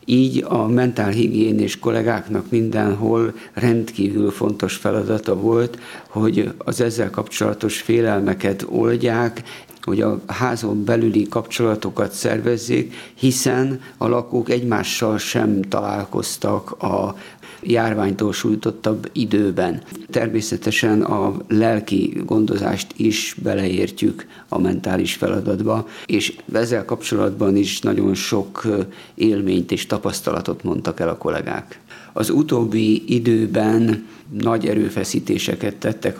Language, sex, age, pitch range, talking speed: Hungarian, male, 50-69, 105-120 Hz, 100 wpm